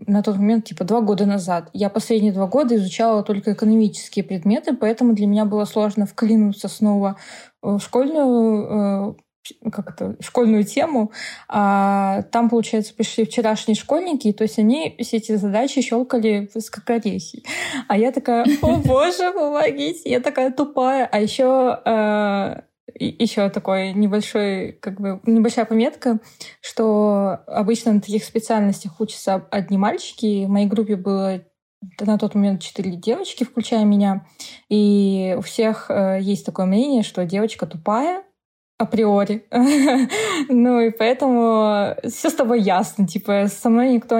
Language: Russian